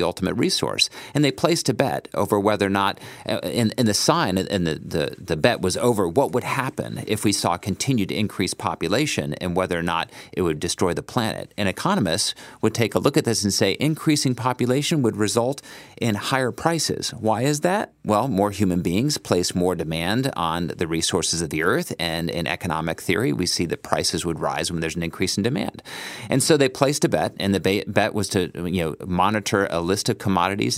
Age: 40-59